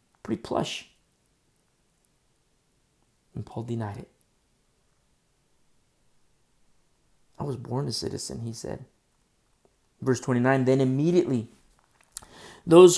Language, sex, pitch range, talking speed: English, male, 115-145 Hz, 85 wpm